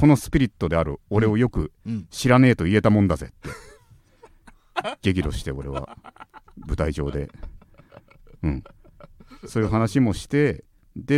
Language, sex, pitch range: Japanese, male, 75-105 Hz